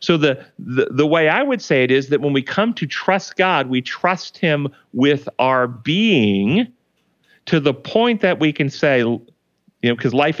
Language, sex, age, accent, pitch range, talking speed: English, male, 40-59, American, 110-150 Hz, 195 wpm